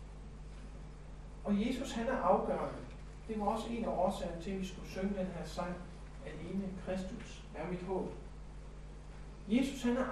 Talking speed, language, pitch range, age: 165 wpm, Danish, 170-220 Hz, 60-79